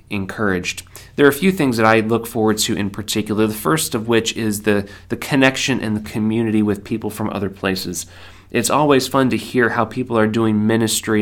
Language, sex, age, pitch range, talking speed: English, male, 30-49, 100-115 Hz, 210 wpm